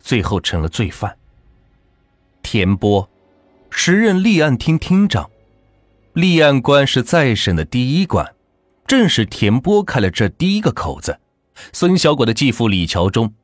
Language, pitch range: Chinese, 95-140 Hz